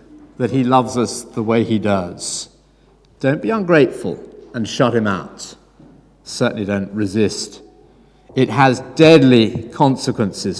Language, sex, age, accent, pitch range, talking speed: English, male, 50-69, British, 120-160 Hz, 125 wpm